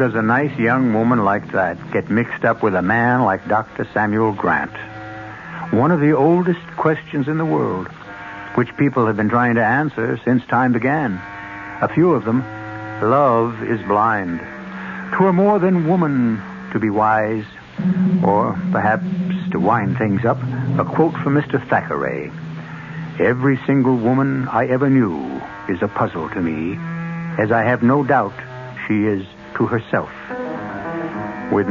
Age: 60-79